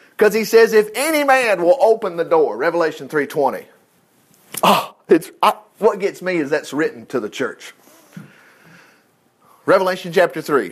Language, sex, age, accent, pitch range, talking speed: English, male, 40-59, American, 175-260 Hz, 140 wpm